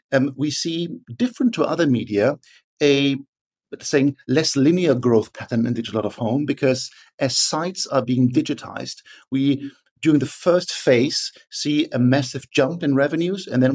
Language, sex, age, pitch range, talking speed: Finnish, male, 50-69, 120-150 Hz, 160 wpm